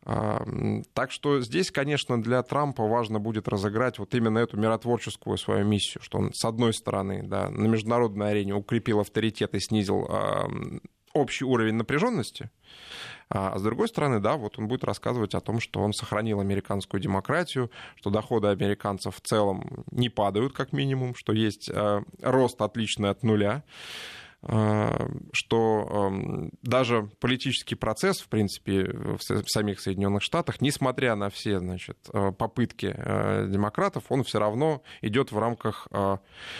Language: Russian